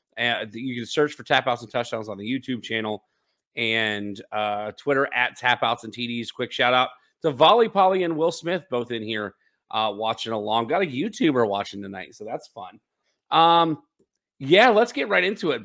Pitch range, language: 120-175 Hz, English